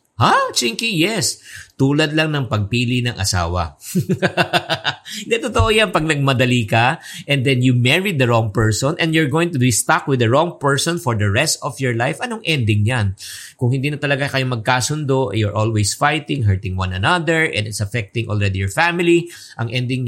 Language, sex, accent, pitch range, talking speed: English, male, Filipino, 105-140 Hz, 185 wpm